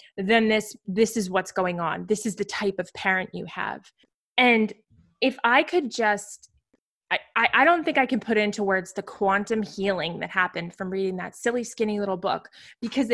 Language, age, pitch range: English, 20-39, 200-245 Hz